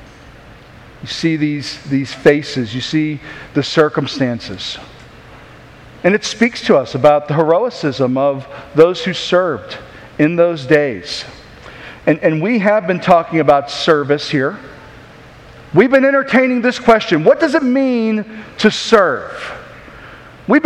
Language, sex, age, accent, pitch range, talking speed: English, male, 50-69, American, 145-220 Hz, 130 wpm